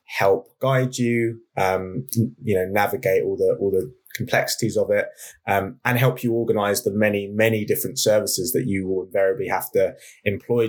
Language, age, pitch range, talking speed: English, 20-39, 100-130 Hz, 175 wpm